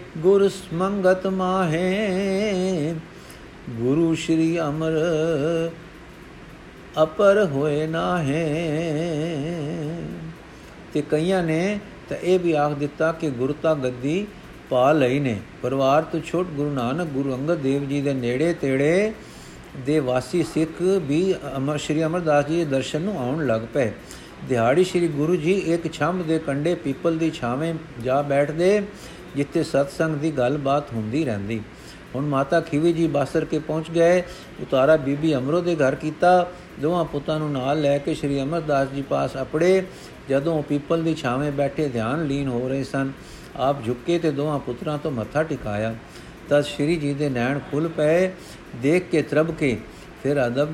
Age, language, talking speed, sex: 50-69, Punjabi, 145 wpm, male